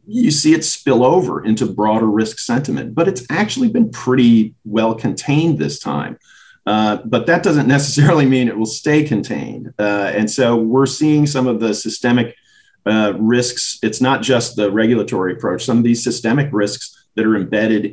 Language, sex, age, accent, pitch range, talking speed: English, male, 40-59, American, 100-130 Hz, 175 wpm